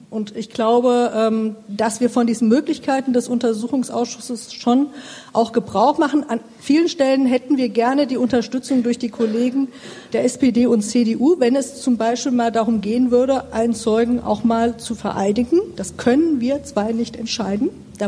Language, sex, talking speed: German, female, 165 wpm